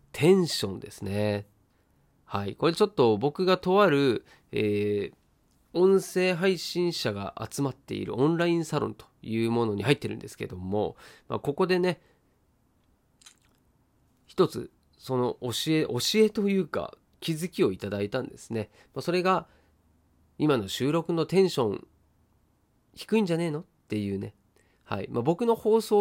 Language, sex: Japanese, male